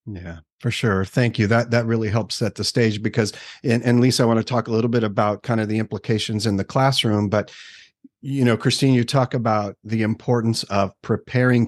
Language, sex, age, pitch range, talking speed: English, male, 50-69, 105-120 Hz, 215 wpm